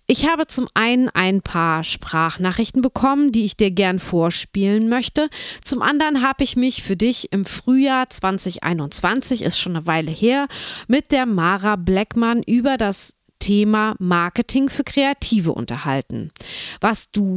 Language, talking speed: German, 145 wpm